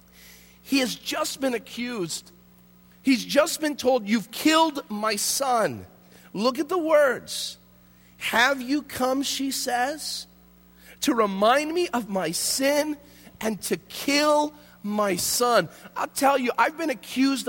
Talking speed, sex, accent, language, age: 135 wpm, male, American, English, 40-59